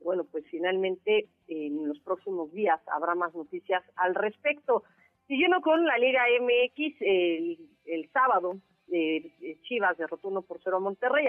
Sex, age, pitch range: female, 40-59, 180-255 Hz